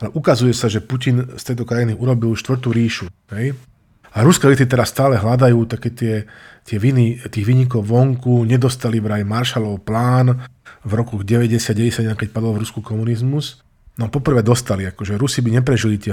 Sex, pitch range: male, 110-125 Hz